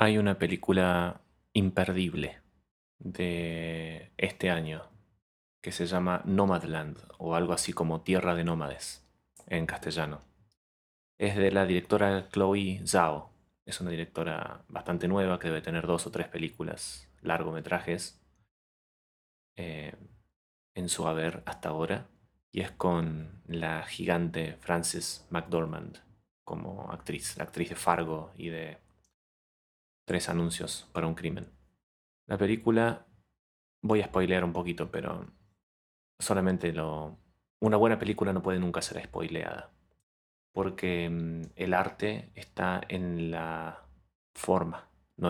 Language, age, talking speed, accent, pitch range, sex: Spanish, 30-49, 120 wpm, Argentinian, 80-90 Hz, male